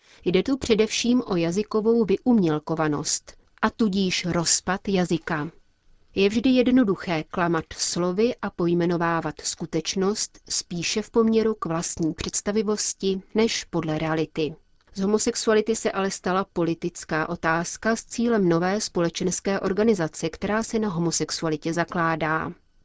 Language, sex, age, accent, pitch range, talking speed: Czech, female, 30-49, native, 165-215 Hz, 115 wpm